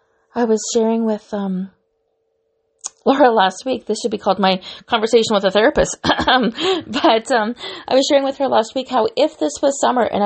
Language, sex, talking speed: English, female, 185 wpm